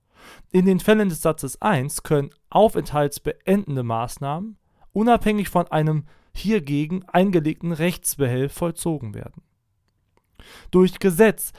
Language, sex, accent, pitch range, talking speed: German, male, German, 135-175 Hz, 100 wpm